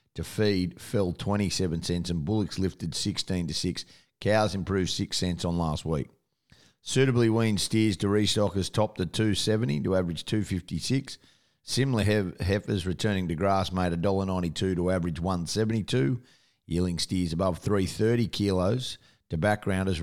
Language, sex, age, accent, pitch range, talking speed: English, male, 50-69, Australian, 90-110 Hz, 145 wpm